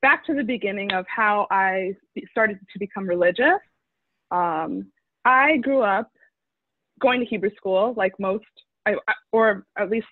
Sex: female